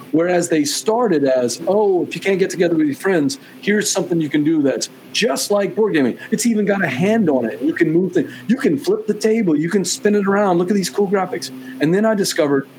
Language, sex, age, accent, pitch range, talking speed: English, male, 40-59, American, 130-190 Hz, 250 wpm